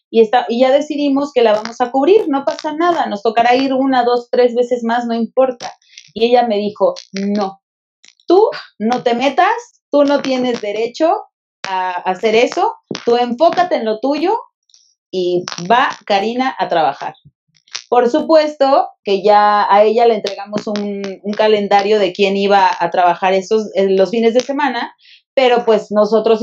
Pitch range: 195-250 Hz